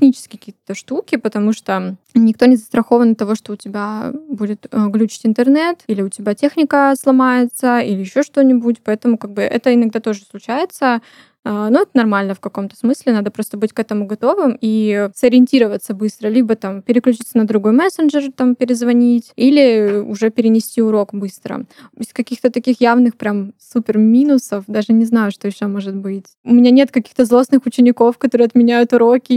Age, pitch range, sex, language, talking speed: 10-29, 215-255 Hz, female, Russian, 165 wpm